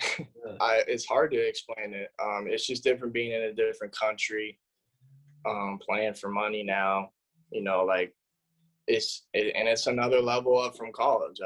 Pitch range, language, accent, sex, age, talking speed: 110-165 Hz, English, American, male, 20-39, 170 wpm